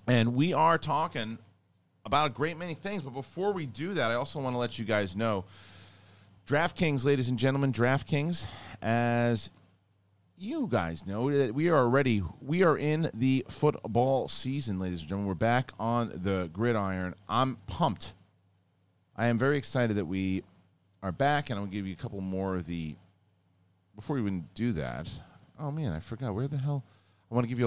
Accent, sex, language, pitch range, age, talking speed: American, male, English, 90-120 Hz, 40-59, 185 wpm